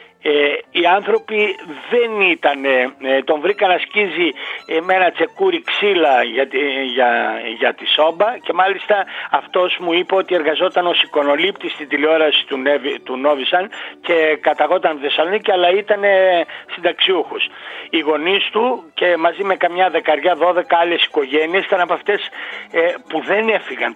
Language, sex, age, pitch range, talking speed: Greek, male, 60-79, 150-200 Hz, 135 wpm